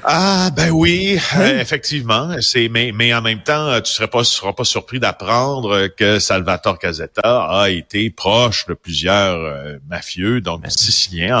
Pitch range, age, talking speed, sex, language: 95-140 Hz, 40-59, 155 wpm, male, French